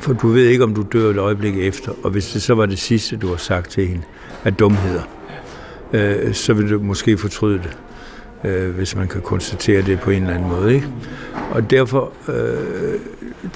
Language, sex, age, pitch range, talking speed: Danish, male, 60-79, 100-125 Hz, 205 wpm